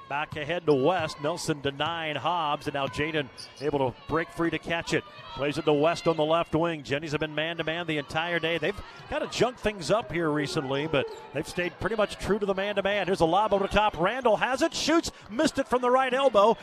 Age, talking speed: 40-59, 235 wpm